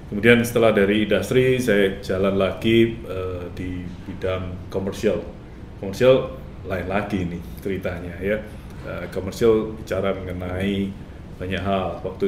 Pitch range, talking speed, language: 90-105 Hz, 115 wpm, Indonesian